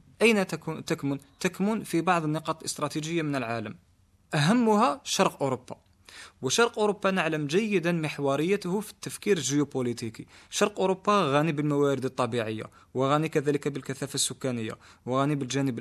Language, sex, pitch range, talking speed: Arabic, male, 135-185 Hz, 120 wpm